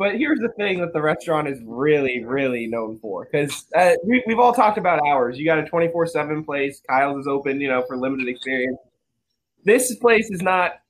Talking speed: 205 wpm